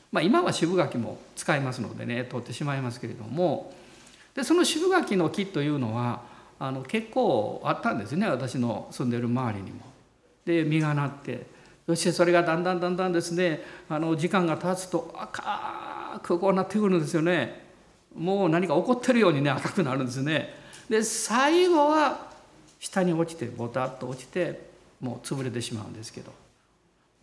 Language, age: Japanese, 50-69